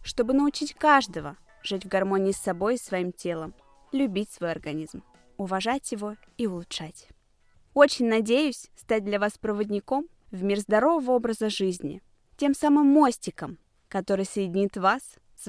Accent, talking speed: native, 140 wpm